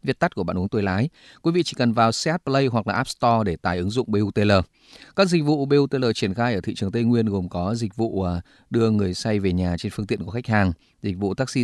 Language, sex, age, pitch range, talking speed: Vietnamese, male, 20-39, 95-125 Hz, 270 wpm